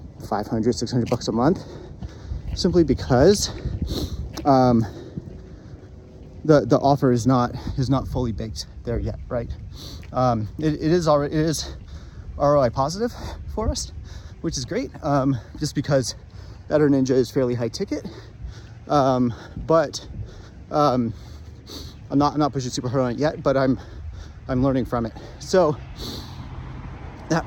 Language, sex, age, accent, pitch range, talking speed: English, male, 30-49, American, 100-145 Hz, 135 wpm